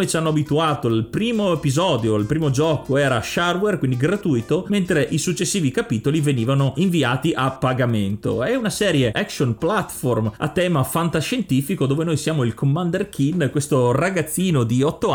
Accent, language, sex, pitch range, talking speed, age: native, Italian, male, 130-165 Hz, 155 wpm, 30-49